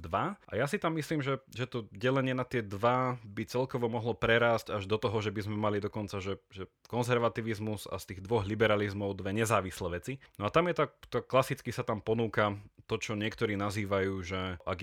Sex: male